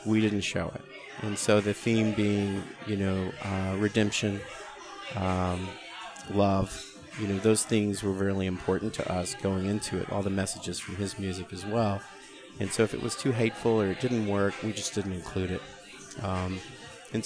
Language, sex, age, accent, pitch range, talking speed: English, male, 40-59, American, 100-115 Hz, 185 wpm